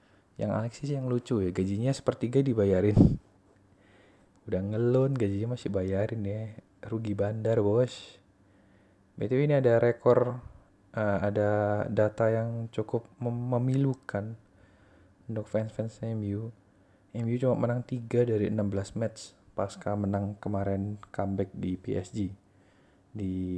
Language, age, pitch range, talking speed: Indonesian, 20-39, 95-115 Hz, 115 wpm